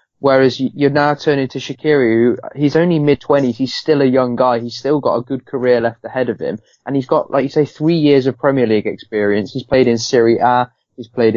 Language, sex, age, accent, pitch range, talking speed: English, male, 20-39, British, 115-140 Hz, 225 wpm